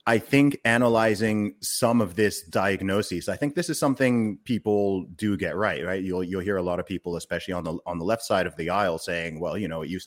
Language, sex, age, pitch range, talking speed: English, male, 30-49, 85-105 Hz, 240 wpm